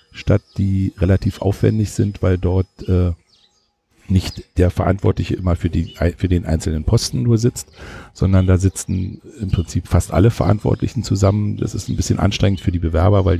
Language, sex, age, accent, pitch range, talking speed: German, male, 50-69, German, 90-100 Hz, 170 wpm